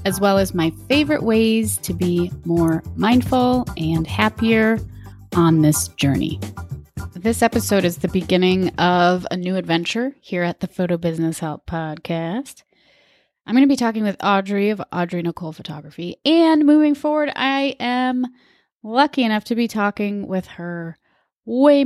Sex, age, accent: female, 30-49, American